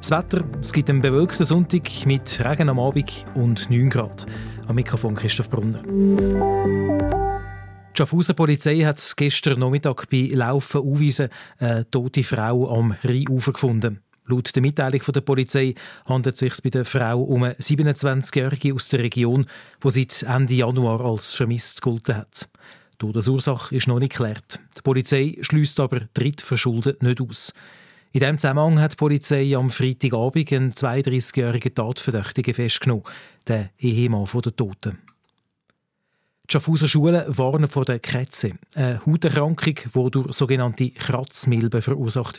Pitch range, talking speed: 125-145 Hz, 145 wpm